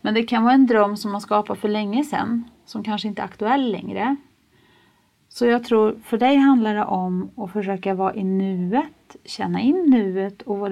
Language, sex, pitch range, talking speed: Swedish, female, 190-240 Hz, 200 wpm